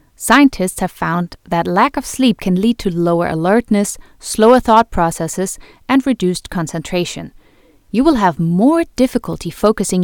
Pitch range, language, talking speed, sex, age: 170-230 Hz, English, 145 wpm, female, 30-49